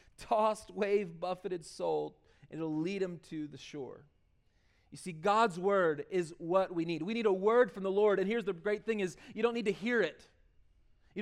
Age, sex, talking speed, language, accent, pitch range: 30-49, male, 210 wpm, English, American, 195-250 Hz